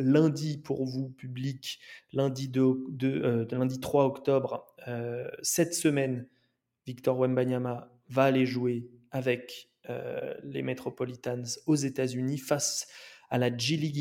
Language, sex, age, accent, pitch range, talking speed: French, male, 20-39, French, 125-140 Hz, 135 wpm